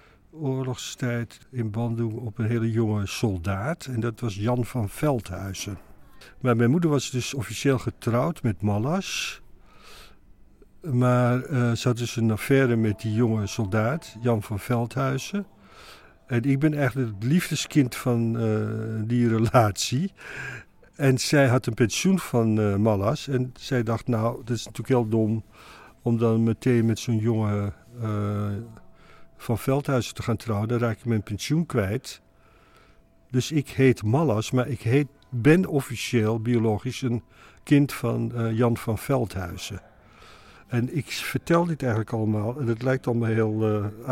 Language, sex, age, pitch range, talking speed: Dutch, male, 50-69, 110-130 Hz, 150 wpm